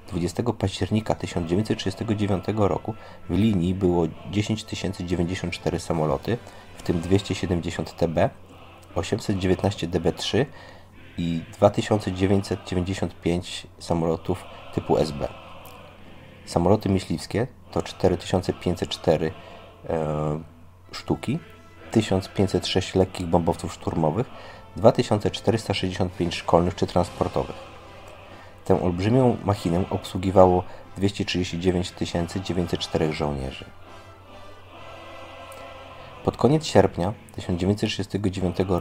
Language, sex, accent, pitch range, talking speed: Polish, male, native, 85-100 Hz, 70 wpm